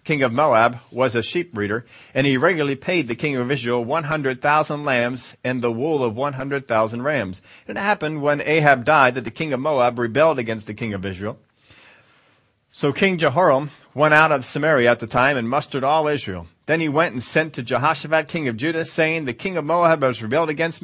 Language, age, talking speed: English, 40-59, 215 wpm